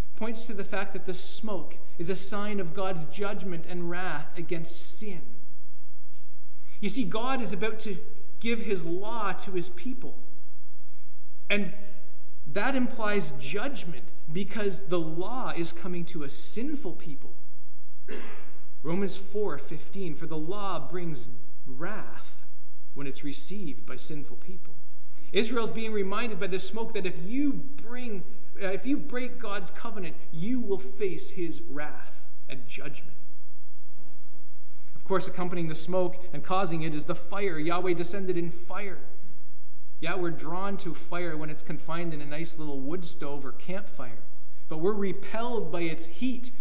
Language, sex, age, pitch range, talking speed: English, male, 30-49, 160-205 Hz, 150 wpm